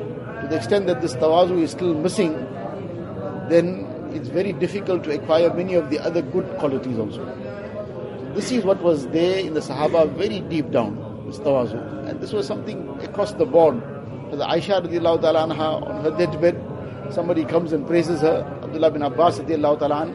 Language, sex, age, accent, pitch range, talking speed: English, male, 50-69, Indian, 145-175 Hz, 160 wpm